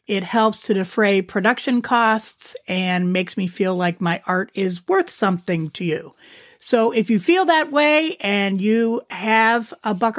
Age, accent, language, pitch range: 40-59, American, English, 205-260 Hz